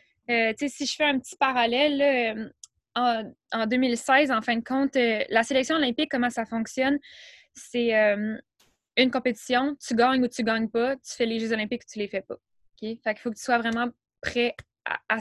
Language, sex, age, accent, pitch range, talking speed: French, female, 10-29, Canadian, 220-260 Hz, 215 wpm